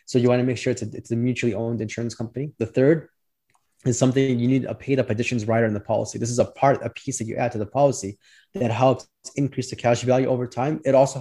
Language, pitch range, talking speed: English, 115-130 Hz, 260 wpm